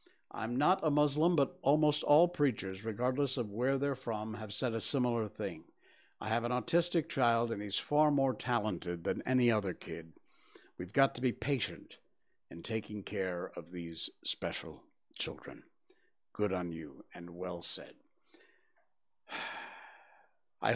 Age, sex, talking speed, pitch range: 60-79, male, 145 wpm, 100-135 Hz